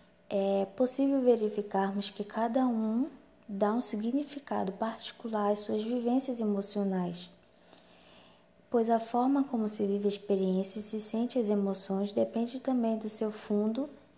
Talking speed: 135 wpm